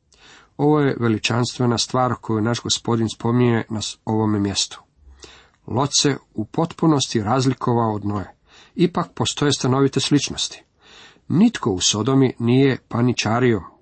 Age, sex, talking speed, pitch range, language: 40-59, male, 115 wpm, 110-135 Hz, Croatian